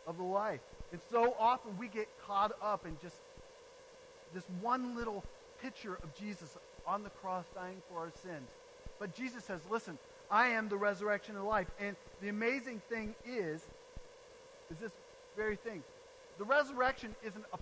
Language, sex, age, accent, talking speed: English, male, 40-59, American, 165 wpm